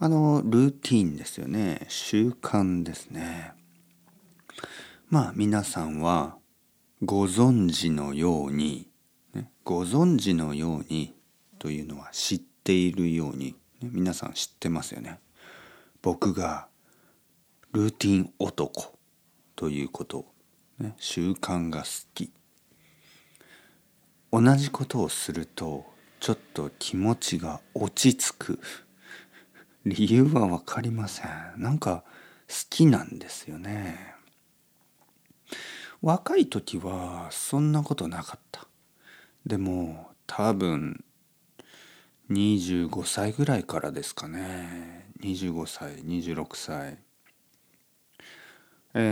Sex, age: male, 50-69